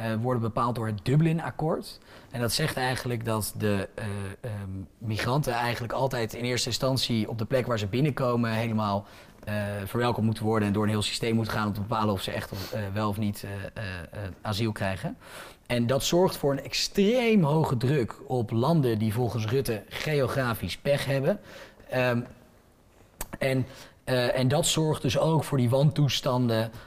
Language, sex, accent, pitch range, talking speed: Dutch, male, Dutch, 105-125 Hz, 175 wpm